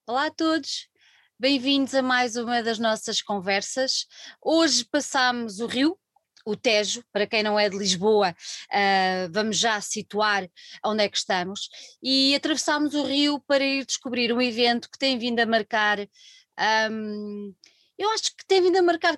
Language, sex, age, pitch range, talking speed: Portuguese, female, 20-39, 225-280 Hz, 155 wpm